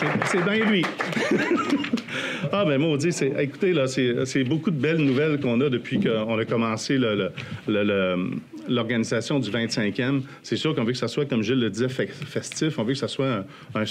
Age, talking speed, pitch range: 50-69, 205 wpm, 120-155 Hz